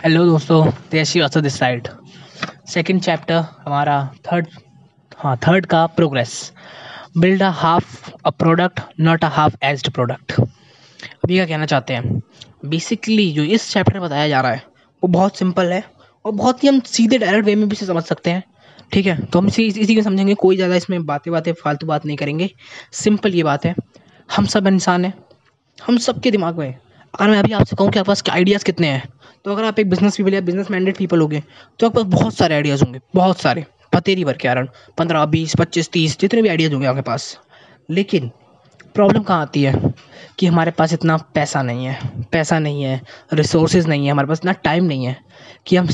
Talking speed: 200 wpm